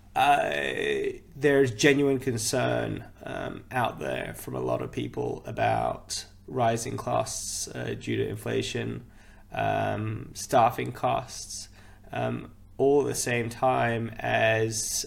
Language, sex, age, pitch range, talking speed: English, male, 20-39, 105-120 Hz, 120 wpm